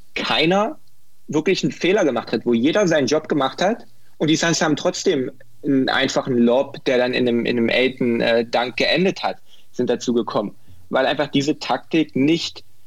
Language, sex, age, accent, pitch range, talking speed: German, male, 20-39, German, 110-120 Hz, 180 wpm